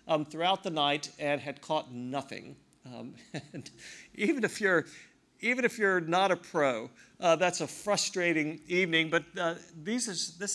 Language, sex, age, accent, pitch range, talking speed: English, male, 50-69, American, 145-180 Hz, 165 wpm